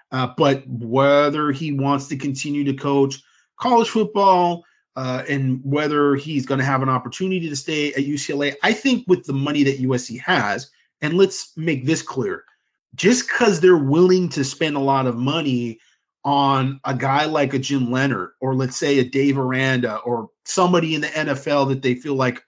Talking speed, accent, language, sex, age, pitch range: 185 wpm, American, English, male, 30-49, 135-165 Hz